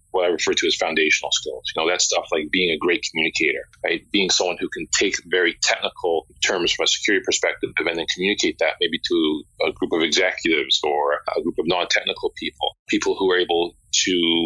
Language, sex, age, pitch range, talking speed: English, male, 30-49, 345-435 Hz, 210 wpm